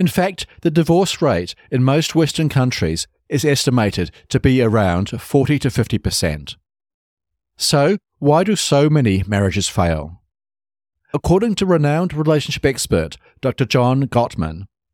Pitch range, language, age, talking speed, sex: 90-150 Hz, English, 50-69, 125 wpm, male